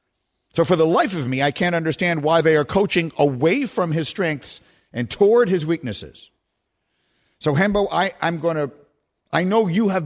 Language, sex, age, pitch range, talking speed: English, male, 50-69, 160-240 Hz, 180 wpm